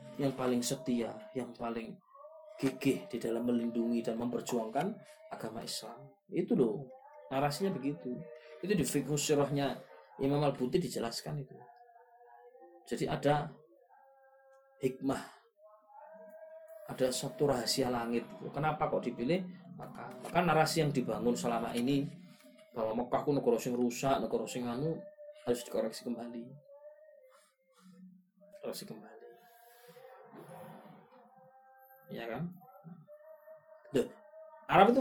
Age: 20-39